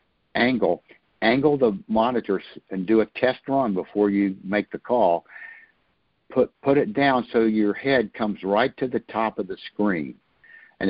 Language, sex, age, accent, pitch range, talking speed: English, male, 60-79, American, 95-115 Hz, 165 wpm